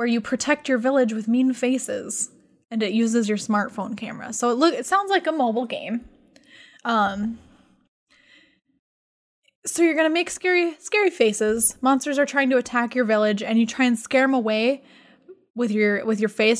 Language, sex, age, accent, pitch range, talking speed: English, female, 10-29, American, 220-275 Hz, 185 wpm